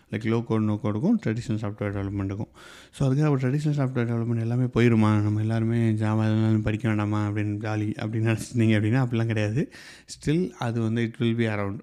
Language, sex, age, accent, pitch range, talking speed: Tamil, male, 30-49, native, 110-130 Hz, 170 wpm